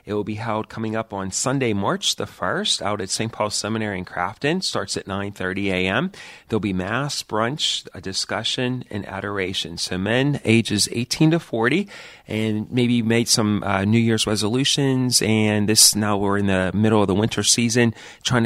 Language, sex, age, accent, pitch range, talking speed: English, male, 30-49, American, 100-125 Hz, 185 wpm